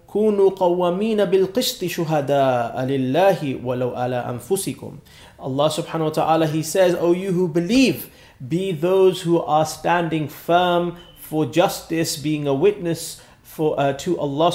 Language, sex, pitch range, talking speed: English, male, 145-180 Hz, 105 wpm